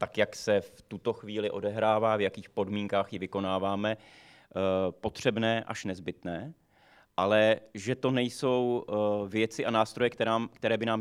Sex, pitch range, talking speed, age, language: male, 100-115 Hz, 135 wpm, 30-49, Czech